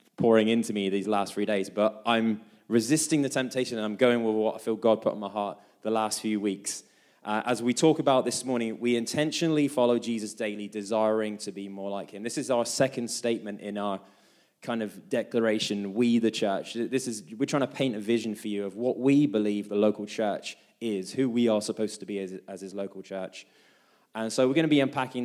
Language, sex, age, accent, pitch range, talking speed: English, male, 20-39, British, 105-125 Hz, 225 wpm